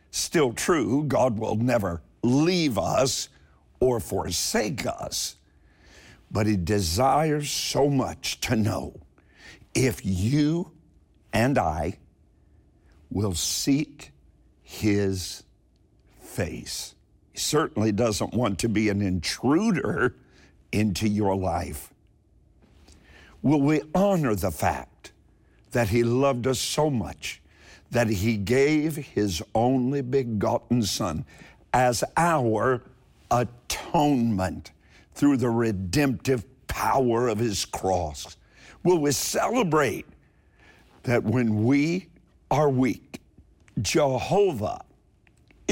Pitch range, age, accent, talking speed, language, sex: 95-140 Hz, 60-79, American, 95 wpm, English, male